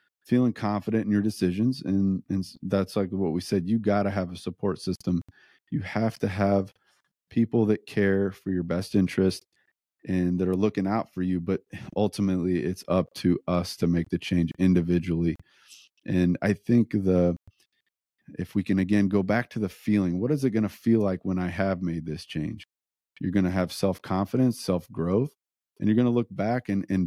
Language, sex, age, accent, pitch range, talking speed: English, male, 30-49, American, 95-110 Hz, 195 wpm